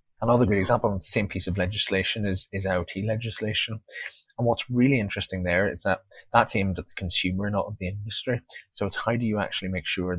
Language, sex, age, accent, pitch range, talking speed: English, male, 30-49, British, 95-110 Hz, 220 wpm